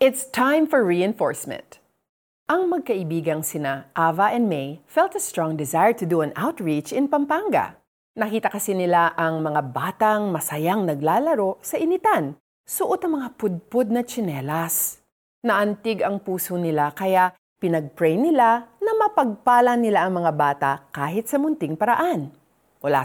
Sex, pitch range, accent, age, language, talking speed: female, 165-255 Hz, native, 40-59, Filipino, 140 wpm